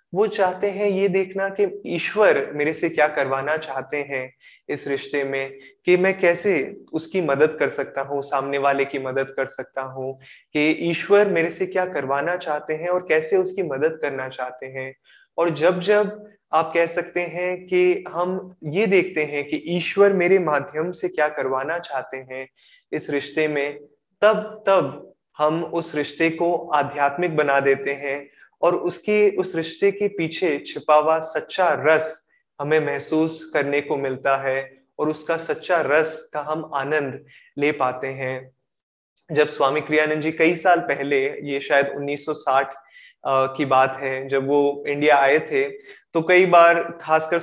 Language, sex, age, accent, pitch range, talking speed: Hindi, male, 20-39, native, 140-175 Hz, 160 wpm